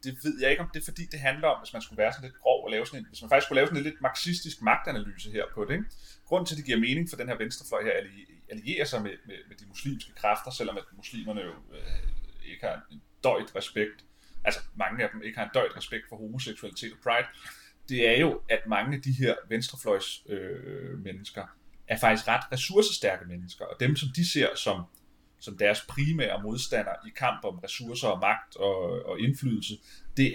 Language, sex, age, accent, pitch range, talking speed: Danish, male, 30-49, native, 105-145 Hz, 225 wpm